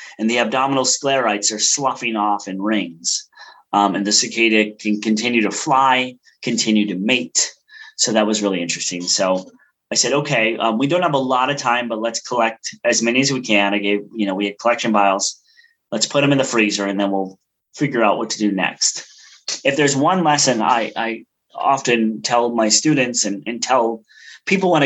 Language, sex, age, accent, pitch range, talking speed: English, male, 30-49, American, 100-130 Hz, 200 wpm